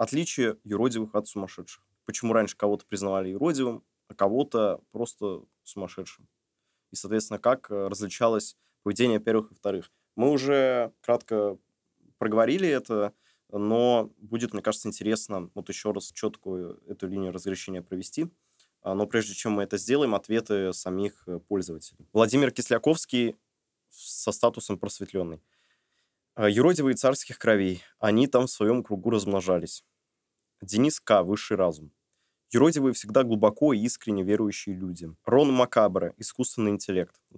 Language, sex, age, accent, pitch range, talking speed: Russian, male, 20-39, native, 95-115 Hz, 125 wpm